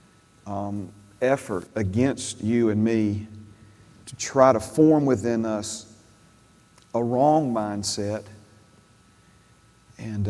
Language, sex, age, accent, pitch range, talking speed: English, male, 40-59, American, 110-130 Hz, 95 wpm